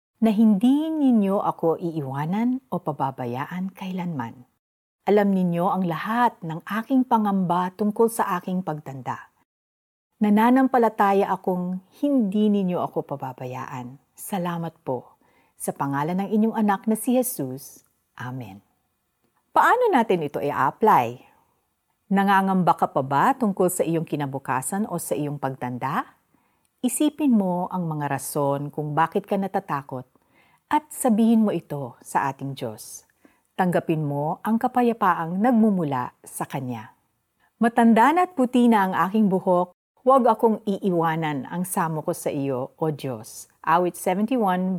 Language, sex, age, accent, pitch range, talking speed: Filipino, female, 50-69, native, 145-220 Hz, 125 wpm